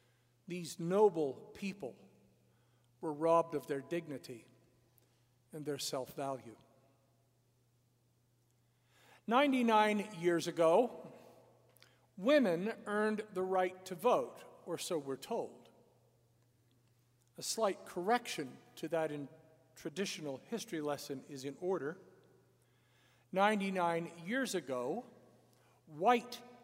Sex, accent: male, American